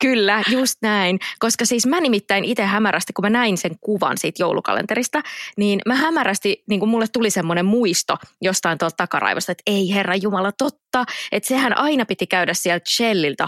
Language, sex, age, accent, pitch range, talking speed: English, female, 20-39, Finnish, 185-245 Hz, 175 wpm